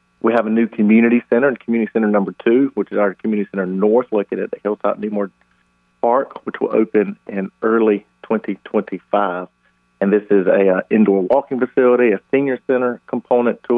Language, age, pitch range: English, 50-69, 95-115 Hz